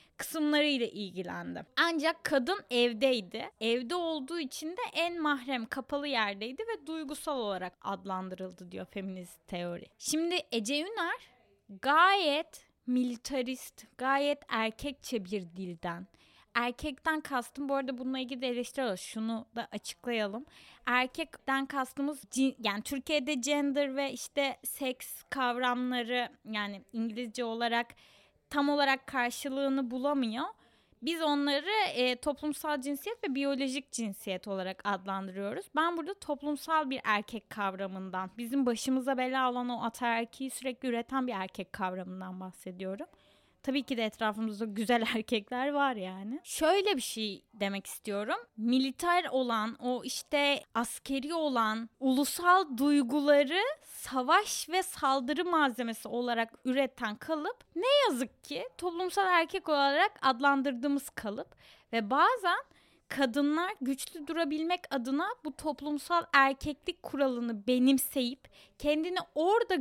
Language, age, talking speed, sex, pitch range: Turkish, 10-29, 115 wpm, female, 230-295 Hz